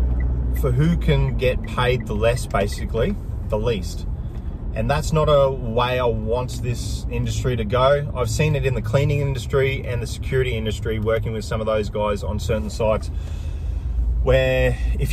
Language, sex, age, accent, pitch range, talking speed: English, male, 20-39, Australian, 95-130 Hz, 170 wpm